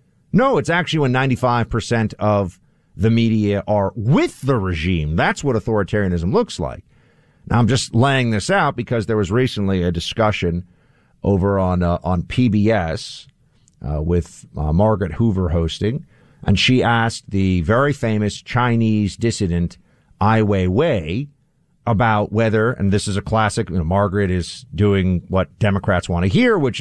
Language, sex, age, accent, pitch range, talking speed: English, male, 50-69, American, 100-145 Hz, 155 wpm